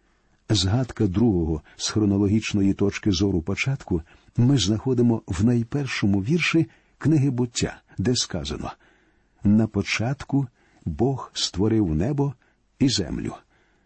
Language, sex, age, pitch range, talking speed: Ukrainian, male, 50-69, 105-135 Hz, 100 wpm